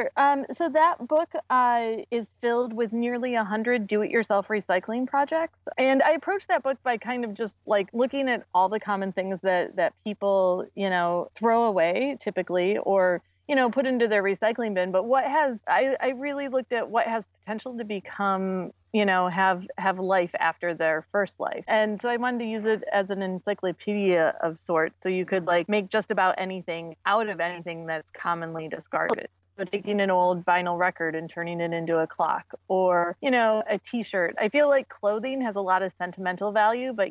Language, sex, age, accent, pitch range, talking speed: English, female, 30-49, American, 180-235 Hz, 195 wpm